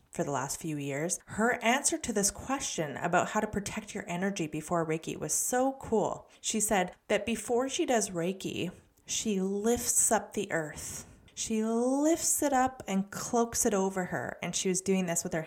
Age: 30-49